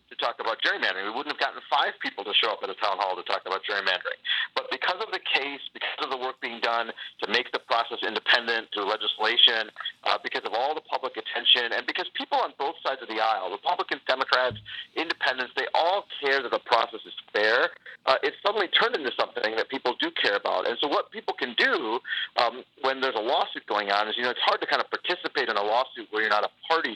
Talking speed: 240 wpm